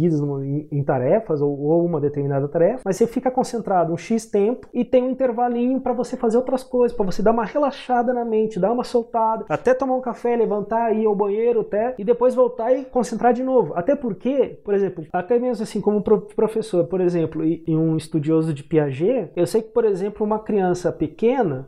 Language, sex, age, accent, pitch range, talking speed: Portuguese, male, 20-39, Brazilian, 170-230 Hz, 200 wpm